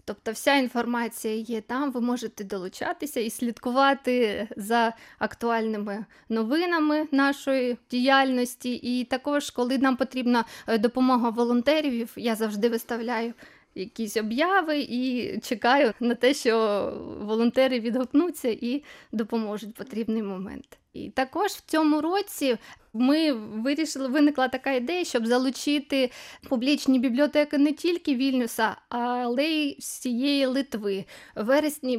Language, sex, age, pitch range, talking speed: Russian, female, 20-39, 230-275 Hz, 115 wpm